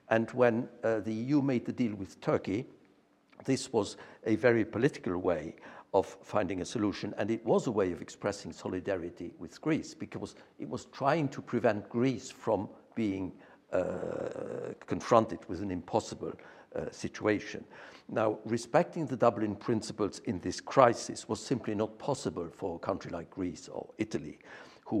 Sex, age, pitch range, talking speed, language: male, 60-79, 100-130 Hz, 160 wpm, English